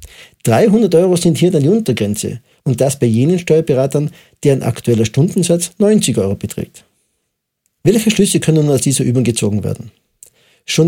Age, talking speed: 50-69, 155 wpm